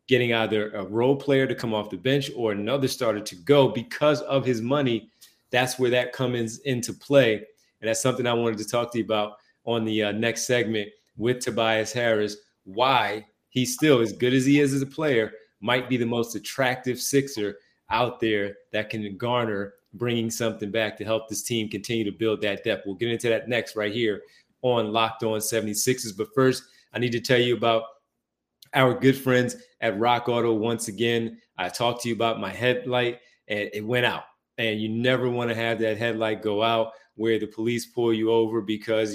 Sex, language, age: male, English, 30-49